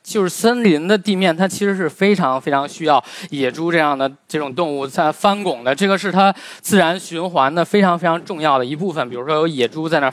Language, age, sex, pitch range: Chinese, 20-39, male, 135-175 Hz